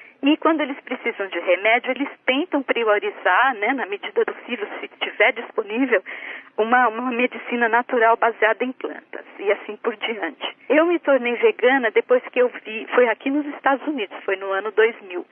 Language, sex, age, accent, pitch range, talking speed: Portuguese, female, 40-59, Brazilian, 205-305 Hz, 175 wpm